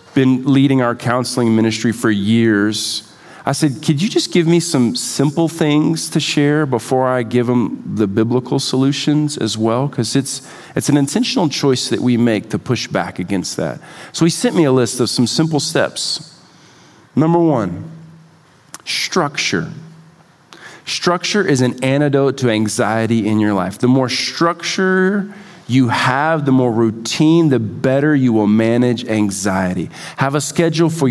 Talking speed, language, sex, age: 160 wpm, English, male, 40-59